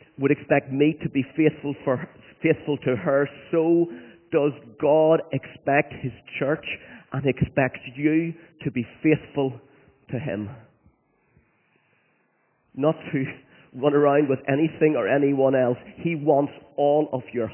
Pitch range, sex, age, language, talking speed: 130-155 Hz, male, 40-59, English, 130 wpm